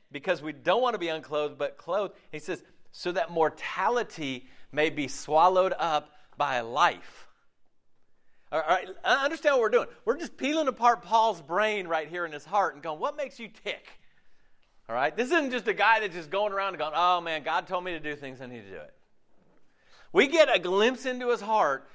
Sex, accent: male, American